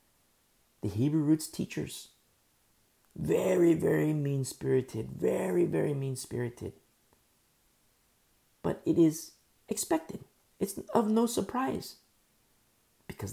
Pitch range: 135-205 Hz